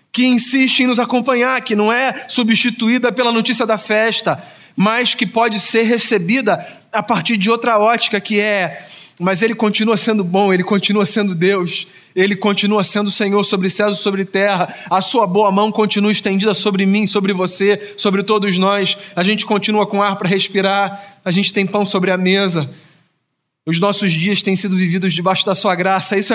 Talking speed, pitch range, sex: 185 wpm, 185-220 Hz, male